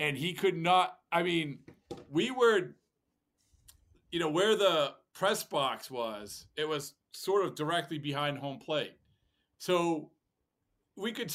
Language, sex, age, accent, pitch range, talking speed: English, male, 40-59, American, 140-185 Hz, 150 wpm